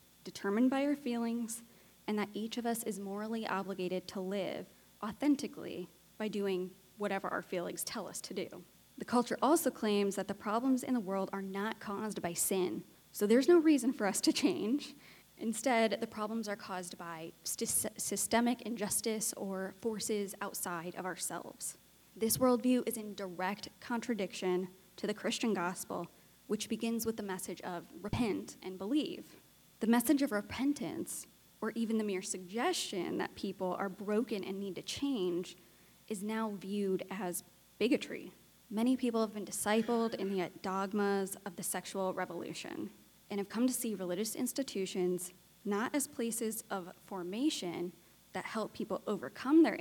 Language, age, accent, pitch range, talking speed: English, 10-29, American, 185-230 Hz, 155 wpm